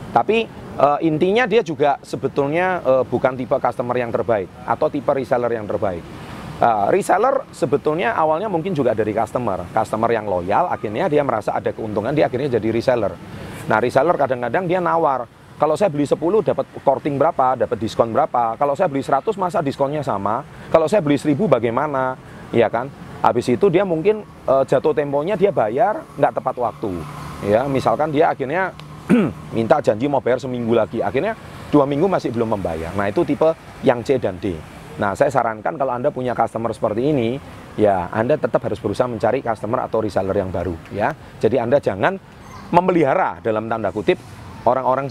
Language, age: Indonesian, 30-49